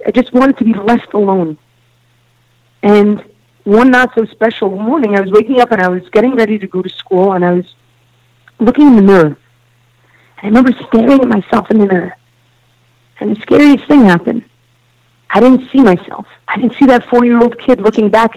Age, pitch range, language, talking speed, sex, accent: 40-59, 185-245 Hz, English, 200 wpm, female, American